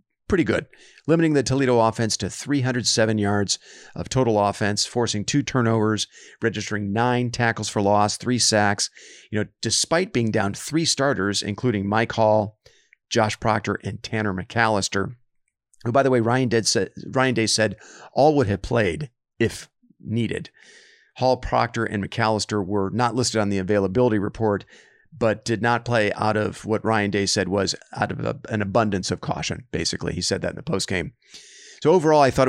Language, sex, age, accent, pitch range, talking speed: English, male, 40-59, American, 105-125 Hz, 170 wpm